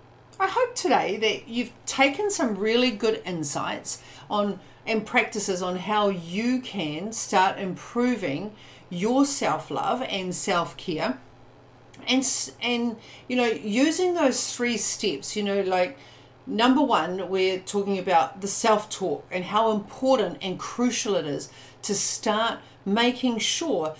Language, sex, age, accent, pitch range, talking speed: English, female, 40-59, Australian, 175-240 Hz, 130 wpm